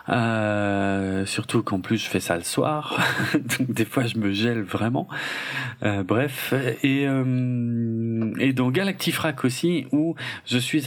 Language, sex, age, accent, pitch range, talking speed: French, male, 40-59, French, 105-135 Hz, 150 wpm